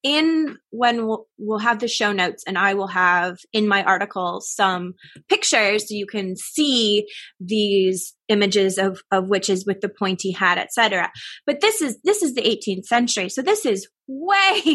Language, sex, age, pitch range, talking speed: English, female, 20-39, 190-245 Hz, 175 wpm